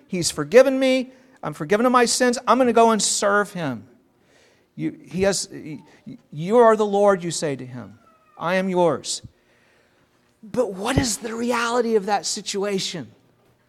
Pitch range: 215-270 Hz